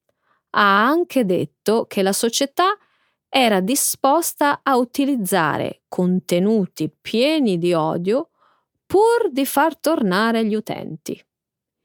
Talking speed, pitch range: 100 wpm, 185-275 Hz